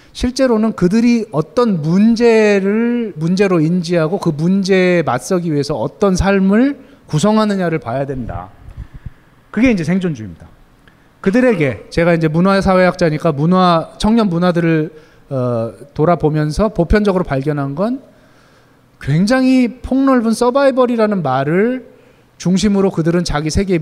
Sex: male